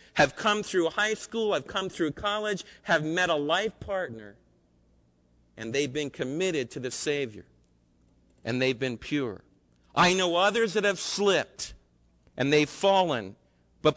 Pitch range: 130-210 Hz